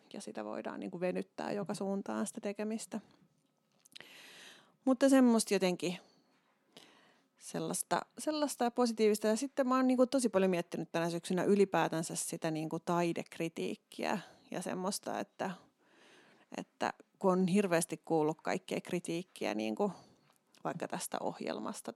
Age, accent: 30-49, native